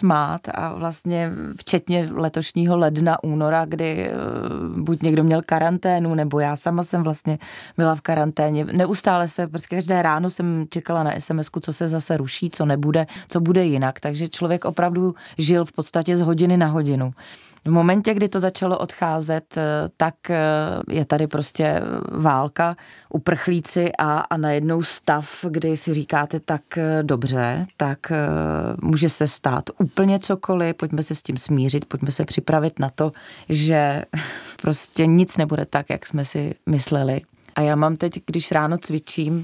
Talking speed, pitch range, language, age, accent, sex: 150 wpm, 150-170 Hz, Czech, 30-49, native, female